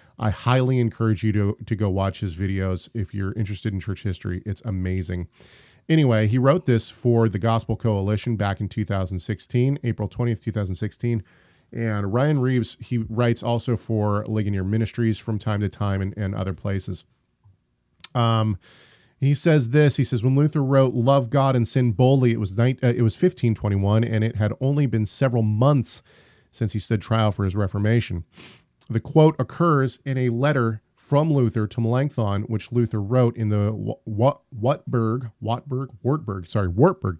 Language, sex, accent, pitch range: English, male, American, 100-125 Hz